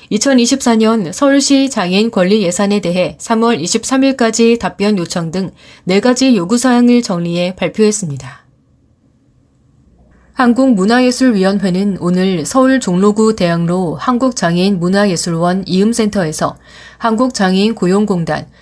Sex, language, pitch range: female, Korean, 180-235 Hz